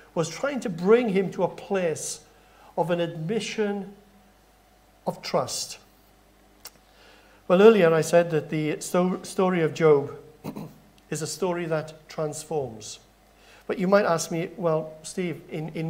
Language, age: English, 50-69